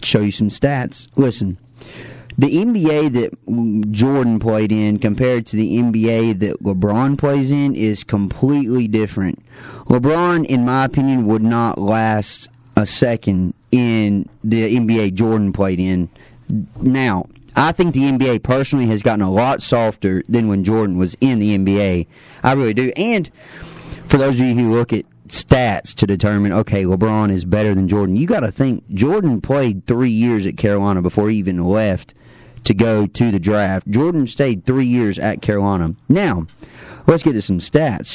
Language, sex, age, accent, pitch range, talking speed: English, male, 30-49, American, 105-130 Hz, 165 wpm